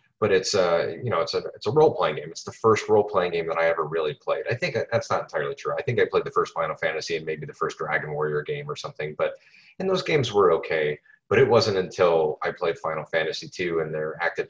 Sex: male